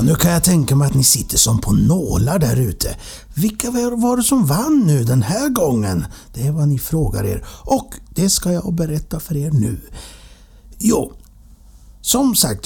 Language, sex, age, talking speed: Swedish, male, 60-79, 185 wpm